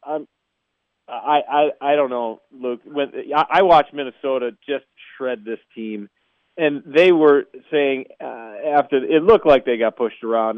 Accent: American